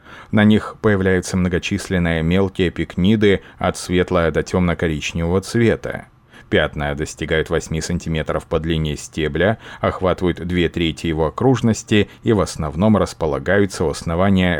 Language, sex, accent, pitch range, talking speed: Russian, male, native, 85-100 Hz, 120 wpm